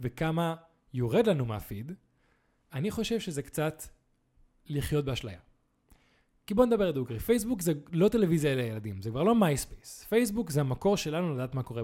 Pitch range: 125-175 Hz